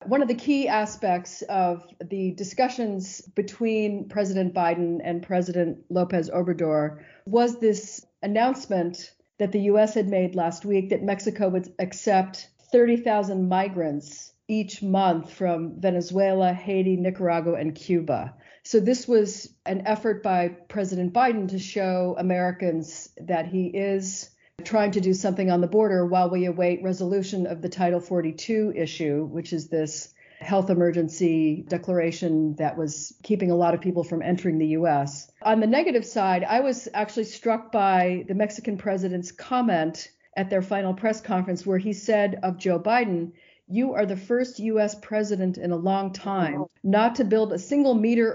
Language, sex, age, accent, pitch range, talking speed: English, female, 40-59, American, 175-215 Hz, 155 wpm